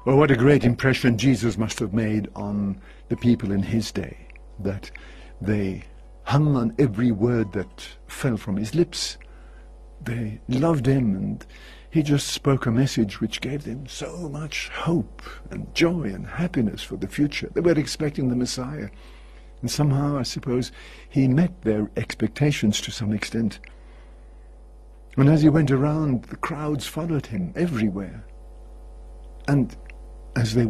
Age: 60-79